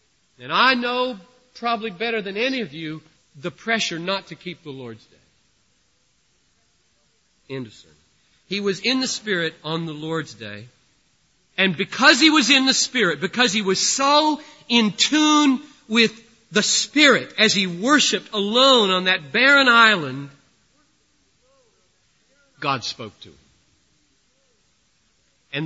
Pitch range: 180-260 Hz